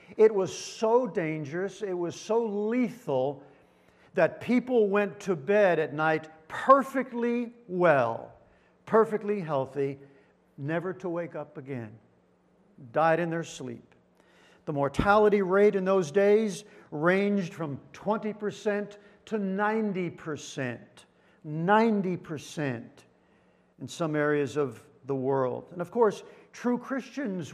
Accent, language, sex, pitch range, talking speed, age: American, English, male, 150-200 Hz, 110 wpm, 50-69